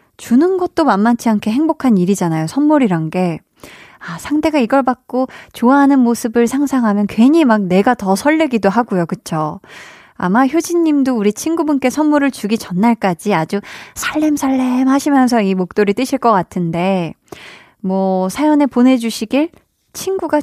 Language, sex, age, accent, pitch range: Korean, female, 20-39, native, 195-280 Hz